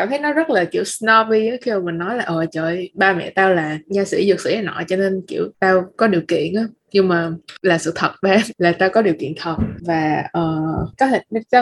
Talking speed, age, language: 245 wpm, 20-39, Vietnamese